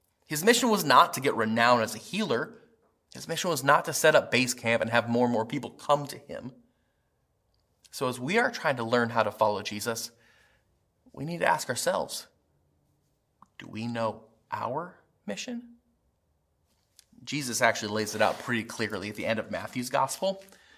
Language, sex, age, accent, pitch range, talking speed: English, male, 30-49, American, 110-155 Hz, 180 wpm